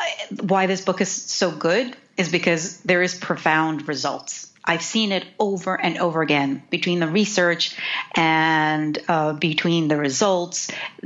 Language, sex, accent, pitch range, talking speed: English, female, American, 175-225 Hz, 145 wpm